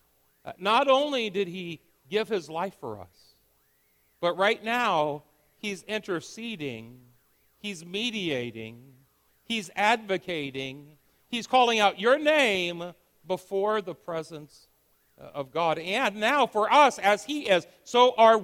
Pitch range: 150-210 Hz